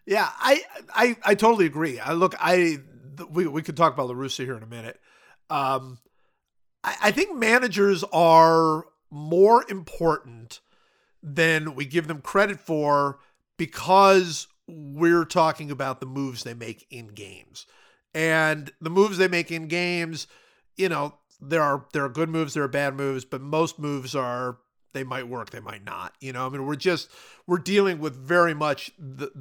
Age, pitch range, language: 50-69, 140-180 Hz, English